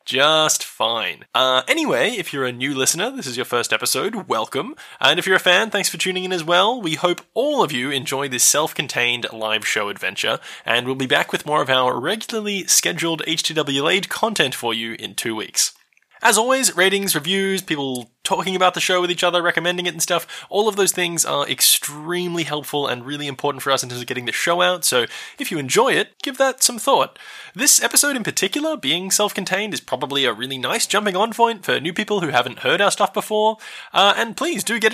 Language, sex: English, male